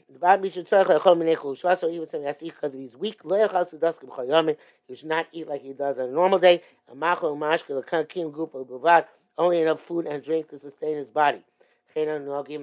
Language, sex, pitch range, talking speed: English, male, 145-175 Hz, 140 wpm